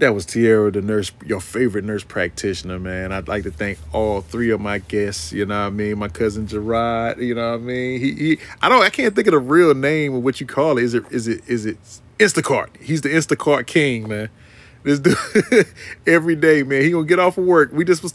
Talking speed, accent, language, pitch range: 245 wpm, American, English, 115-160 Hz